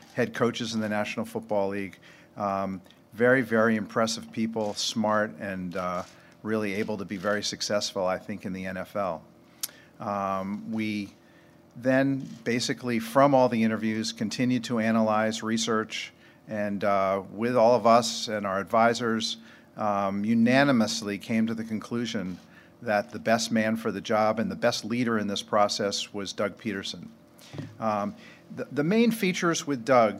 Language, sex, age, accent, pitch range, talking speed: English, male, 50-69, American, 105-120 Hz, 150 wpm